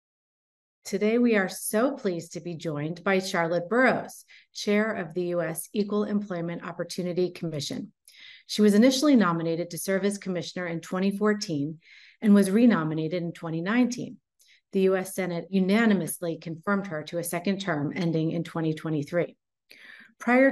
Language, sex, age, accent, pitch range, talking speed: English, female, 30-49, American, 165-200 Hz, 140 wpm